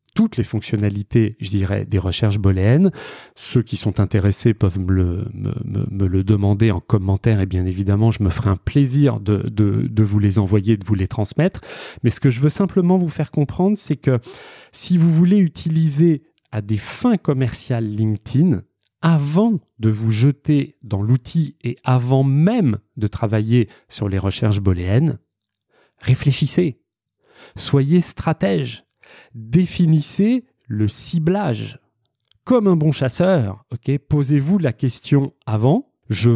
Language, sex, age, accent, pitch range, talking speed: French, male, 30-49, French, 110-160 Hz, 150 wpm